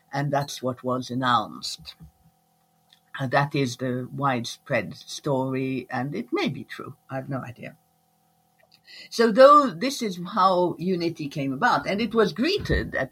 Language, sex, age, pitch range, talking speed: English, female, 60-79, 140-185 Hz, 150 wpm